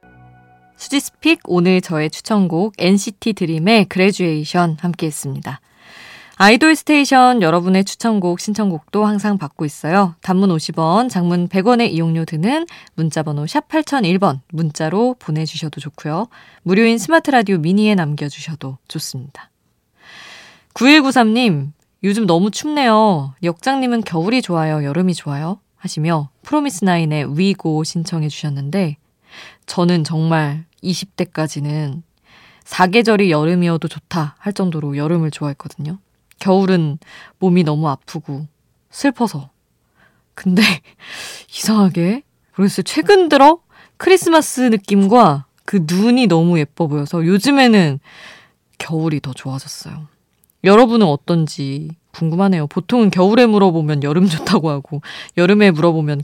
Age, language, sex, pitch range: 20-39, Korean, female, 155-210 Hz